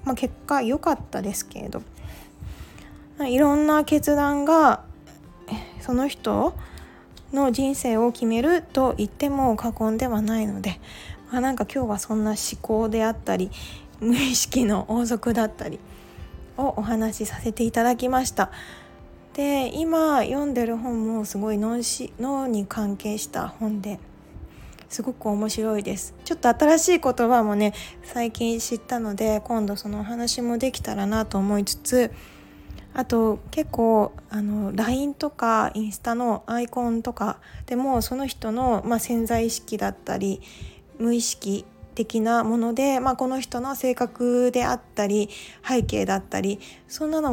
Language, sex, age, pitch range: Japanese, female, 20-39, 215-255 Hz